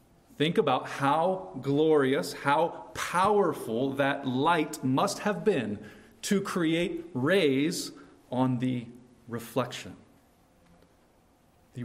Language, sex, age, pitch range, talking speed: English, male, 40-59, 110-140 Hz, 90 wpm